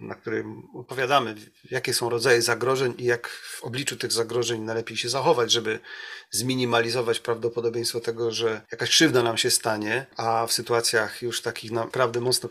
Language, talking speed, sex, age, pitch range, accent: Polish, 160 wpm, male, 40-59, 115-125 Hz, native